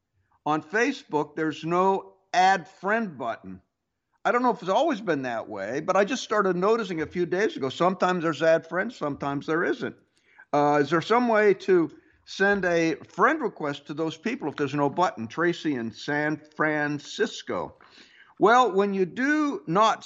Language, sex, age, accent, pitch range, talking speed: English, male, 60-79, American, 145-195 Hz, 175 wpm